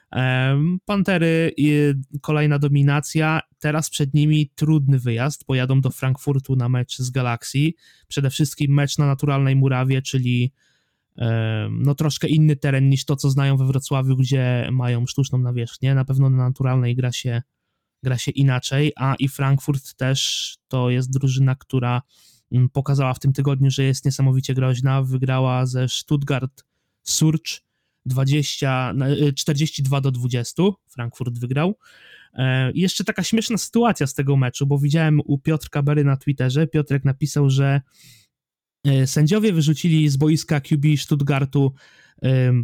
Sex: male